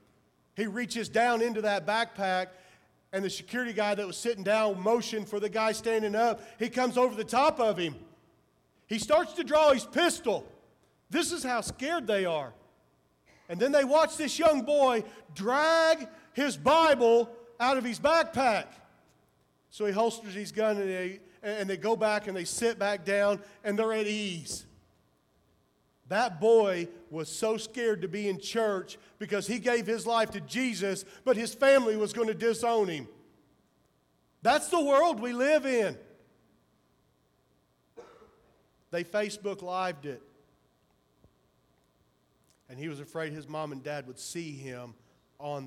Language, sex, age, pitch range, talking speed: English, male, 40-59, 165-235 Hz, 155 wpm